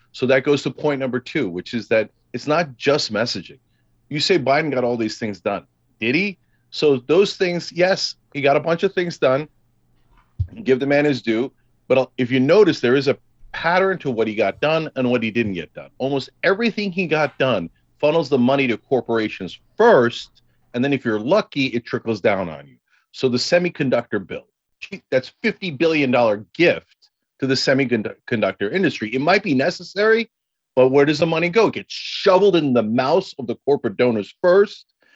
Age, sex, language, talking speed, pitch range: 40-59, male, English, 195 wpm, 125-175 Hz